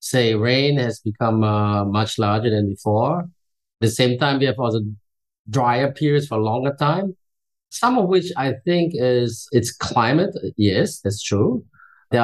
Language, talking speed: English, 165 wpm